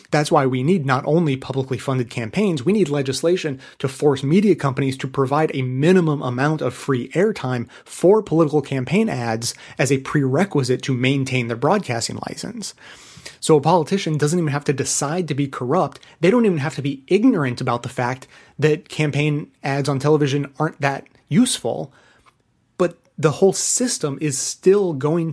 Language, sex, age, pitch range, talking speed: English, male, 30-49, 130-165 Hz, 170 wpm